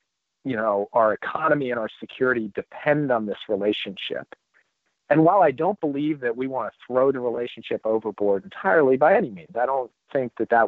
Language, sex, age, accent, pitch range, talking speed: English, male, 50-69, American, 105-135 Hz, 185 wpm